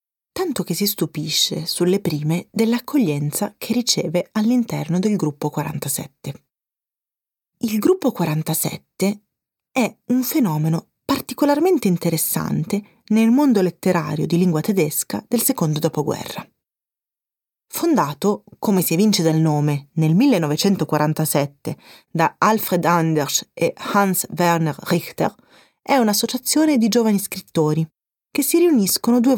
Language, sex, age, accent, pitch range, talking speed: Italian, female, 30-49, native, 165-230 Hz, 110 wpm